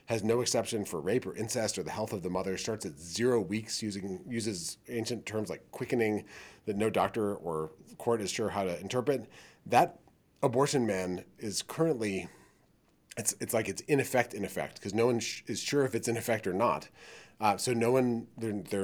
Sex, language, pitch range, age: male, English, 100-125 Hz, 30-49